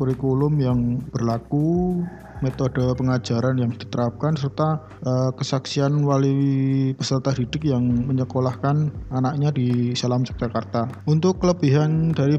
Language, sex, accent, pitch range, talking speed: Indonesian, male, native, 130-155 Hz, 105 wpm